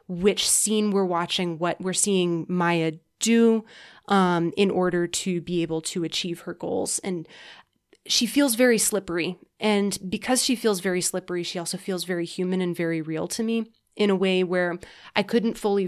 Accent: American